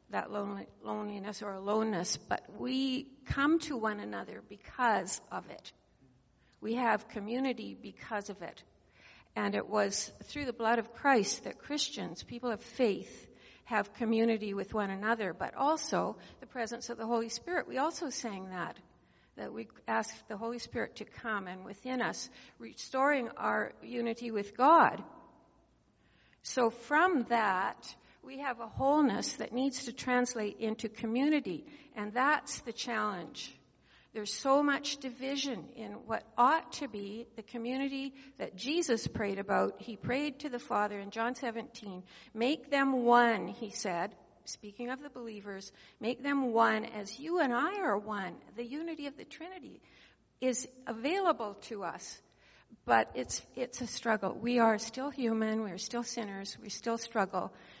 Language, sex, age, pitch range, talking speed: English, female, 60-79, 210-265 Hz, 155 wpm